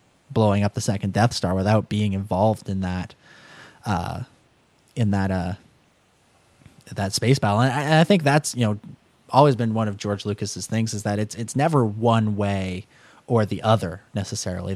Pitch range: 105-130 Hz